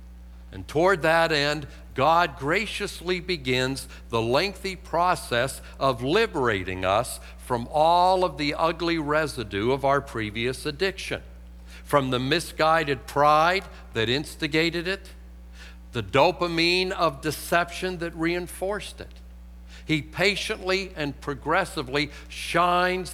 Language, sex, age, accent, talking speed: English, male, 60-79, American, 110 wpm